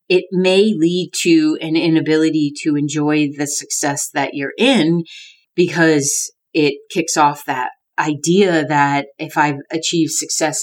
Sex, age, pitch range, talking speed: female, 30-49, 145-165 Hz, 135 wpm